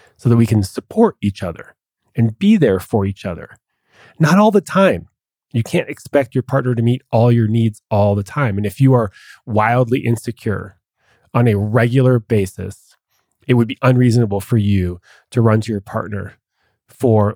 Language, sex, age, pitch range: English, male, 30-49, 105-130 Hz